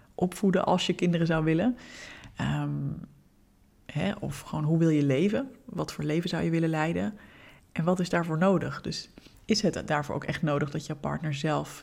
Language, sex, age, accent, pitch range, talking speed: Dutch, female, 20-39, Dutch, 155-185 Hz, 190 wpm